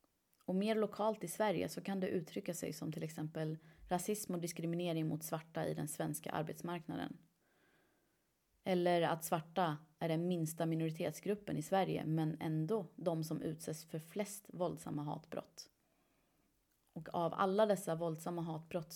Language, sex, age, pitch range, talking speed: Swedish, female, 30-49, 160-190 Hz, 145 wpm